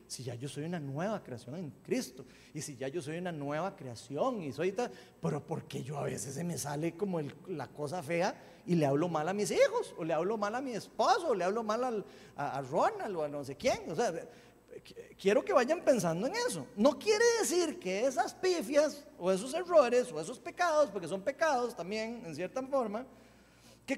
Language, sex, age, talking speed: Spanish, male, 40-59, 215 wpm